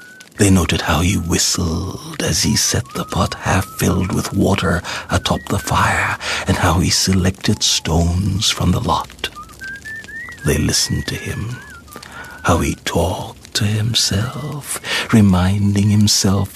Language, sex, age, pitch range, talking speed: English, male, 60-79, 90-105 Hz, 125 wpm